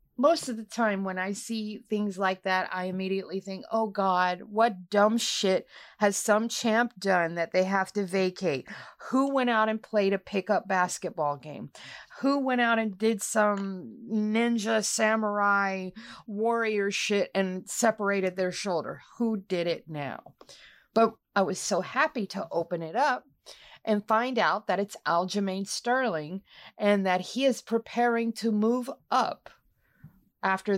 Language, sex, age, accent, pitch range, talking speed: English, female, 40-59, American, 190-230 Hz, 155 wpm